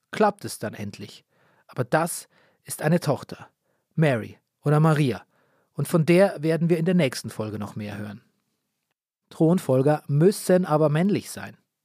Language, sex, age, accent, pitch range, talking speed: German, male, 40-59, German, 135-175 Hz, 145 wpm